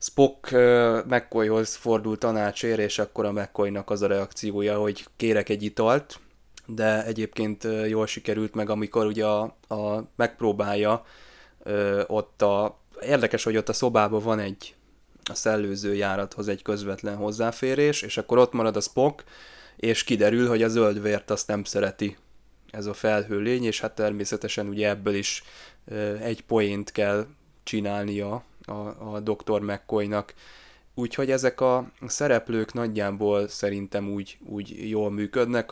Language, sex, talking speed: Hungarian, male, 140 wpm